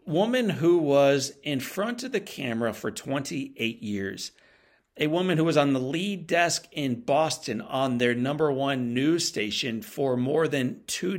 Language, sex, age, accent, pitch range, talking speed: English, male, 40-59, American, 110-155 Hz, 165 wpm